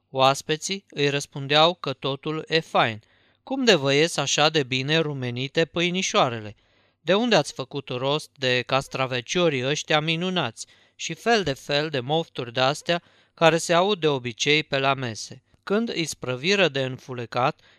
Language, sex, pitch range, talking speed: Romanian, male, 125-165 Hz, 150 wpm